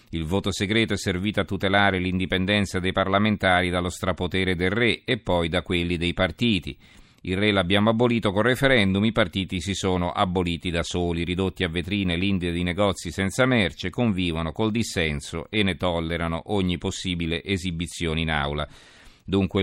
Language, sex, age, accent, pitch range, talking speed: Italian, male, 40-59, native, 85-105 Hz, 160 wpm